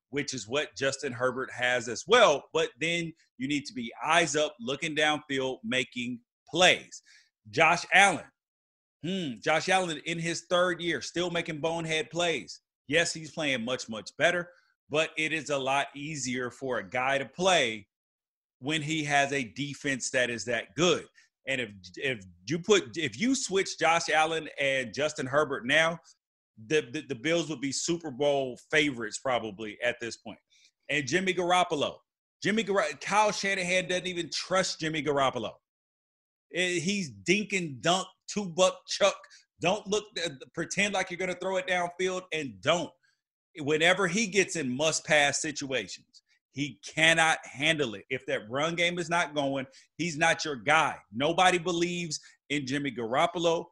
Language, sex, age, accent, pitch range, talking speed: English, male, 30-49, American, 135-180 Hz, 155 wpm